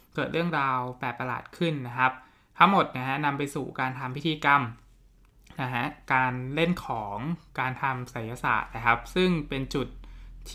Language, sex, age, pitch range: Thai, male, 20-39, 120-150 Hz